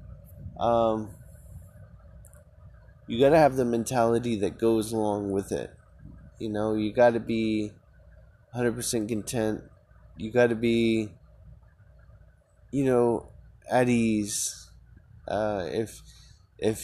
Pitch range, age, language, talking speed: 95-115 Hz, 20-39, English, 115 wpm